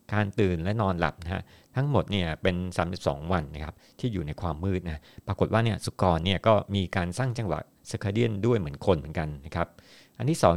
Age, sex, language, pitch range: 50-69, male, Thai, 85-105 Hz